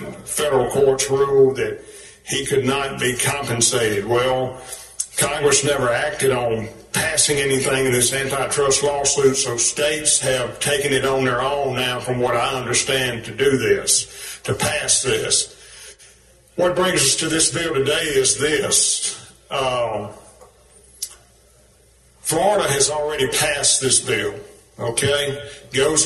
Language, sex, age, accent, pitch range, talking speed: English, male, 50-69, American, 130-150 Hz, 130 wpm